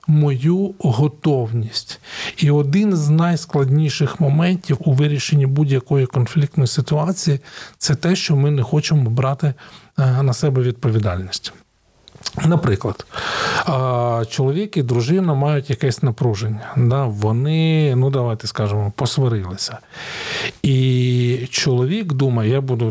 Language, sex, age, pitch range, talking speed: Ukrainian, male, 40-59, 125-155 Hz, 105 wpm